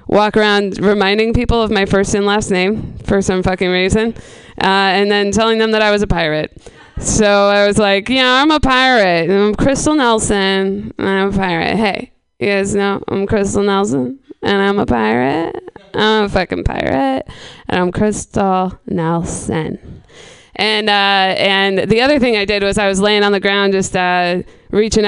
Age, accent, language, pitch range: 20-39, American, English, 185-220 Hz